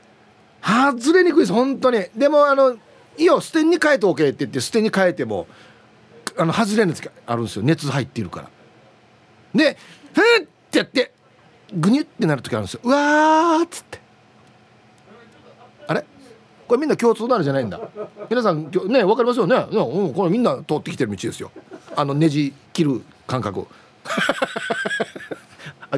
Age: 40-59